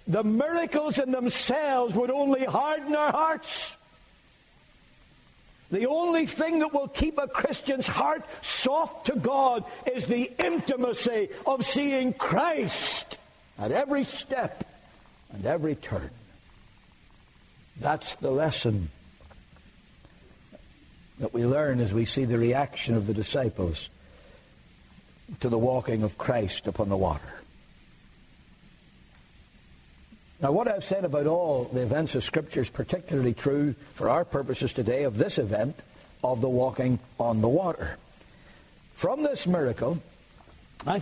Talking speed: 125 wpm